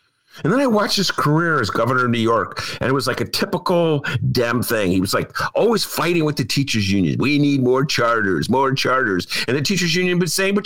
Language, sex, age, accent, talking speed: English, male, 50-69, American, 230 wpm